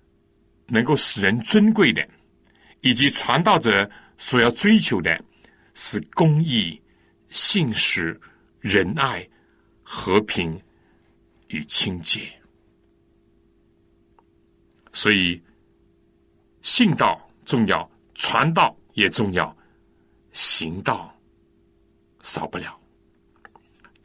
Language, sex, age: Chinese, male, 60-79